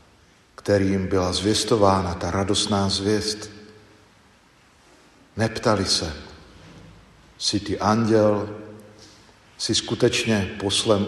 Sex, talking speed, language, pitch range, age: male, 75 wpm, Slovak, 95-110 Hz, 50-69